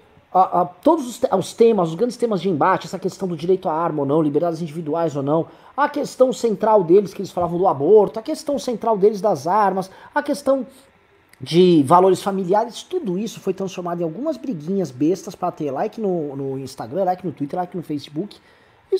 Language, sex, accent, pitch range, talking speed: Portuguese, male, Brazilian, 170-235 Hz, 205 wpm